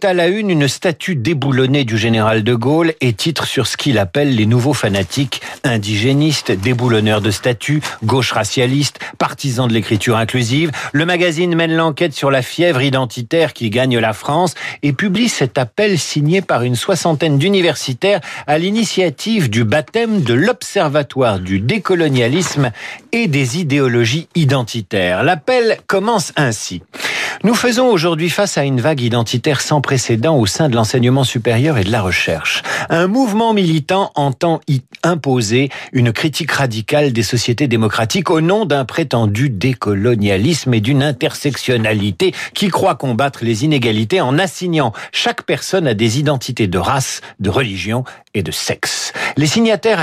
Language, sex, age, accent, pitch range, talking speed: French, male, 50-69, French, 120-175 Hz, 150 wpm